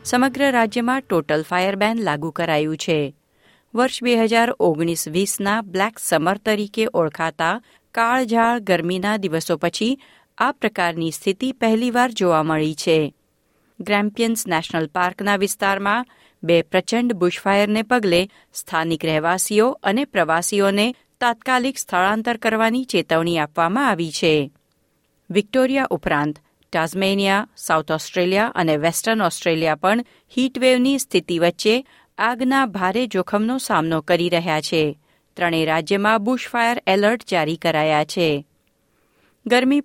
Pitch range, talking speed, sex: 170-235 Hz, 110 wpm, female